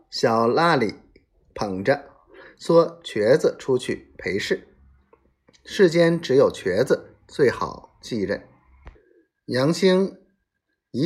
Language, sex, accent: Chinese, male, native